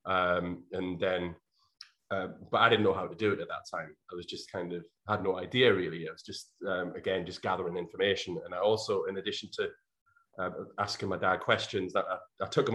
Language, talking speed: English, 225 wpm